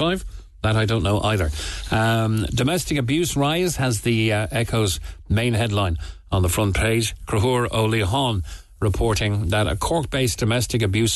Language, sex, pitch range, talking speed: English, male, 90-115 Hz, 145 wpm